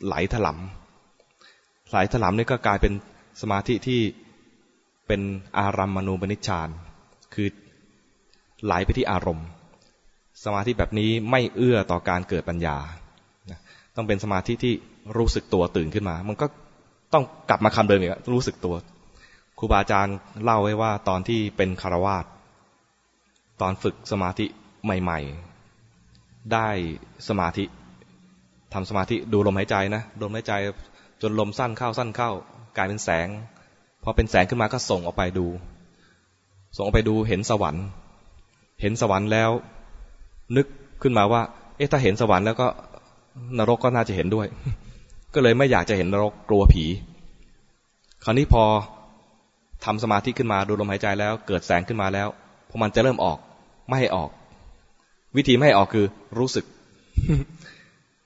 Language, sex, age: English, male, 20-39